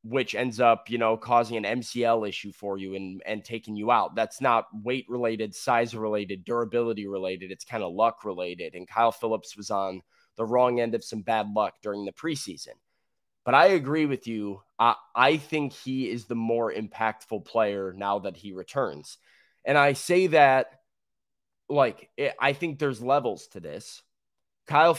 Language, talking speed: English, 180 wpm